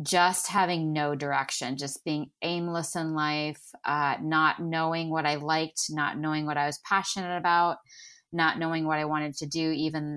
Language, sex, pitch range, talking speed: English, female, 145-170 Hz, 185 wpm